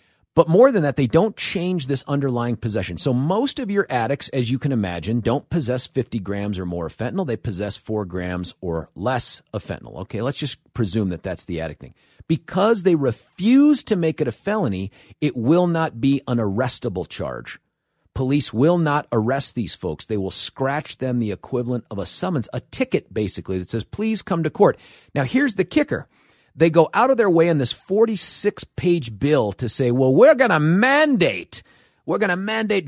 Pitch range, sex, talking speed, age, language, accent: 120-180 Hz, male, 195 wpm, 40-59, English, American